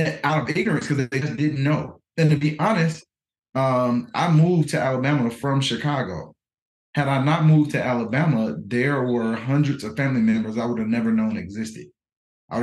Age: 30-49